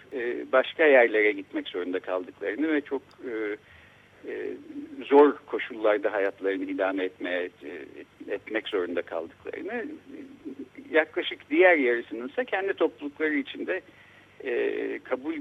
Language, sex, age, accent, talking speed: Turkish, male, 60-79, native, 90 wpm